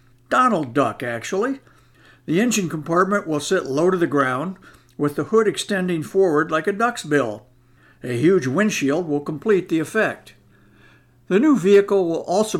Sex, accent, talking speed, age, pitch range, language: male, American, 155 wpm, 60-79, 145-195 Hz, English